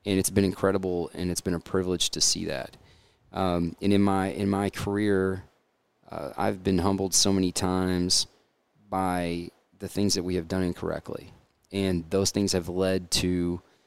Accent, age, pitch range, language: American, 30-49, 90-100 Hz, English